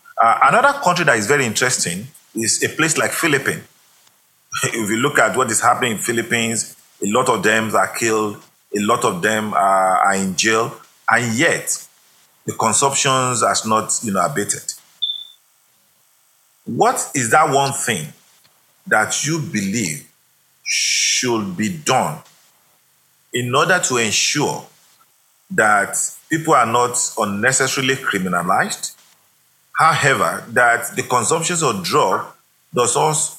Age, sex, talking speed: 40-59, male, 125 wpm